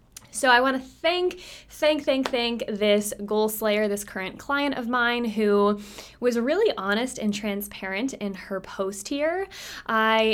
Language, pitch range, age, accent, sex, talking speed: English, 200-255 Hz, 20-39, American, female, 155 wpm